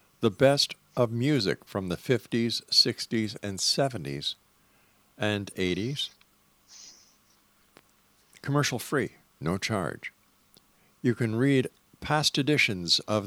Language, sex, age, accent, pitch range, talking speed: English, male, 50-69, American, 95-120 Hz, 95 wpm